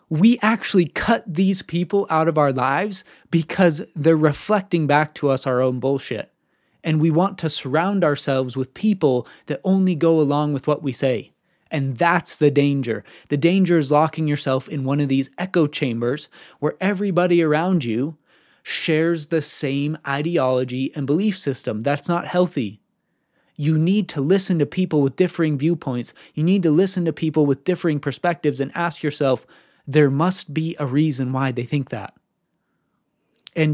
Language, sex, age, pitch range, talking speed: English, male, 20-39, 140-170 Hz, 165 wpm